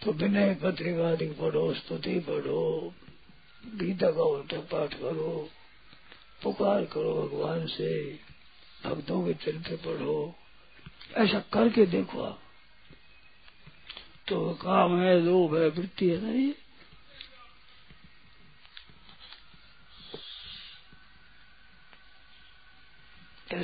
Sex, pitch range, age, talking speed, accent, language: male, 180-225 Hz, 50-69, 80 wpm, native, Hindi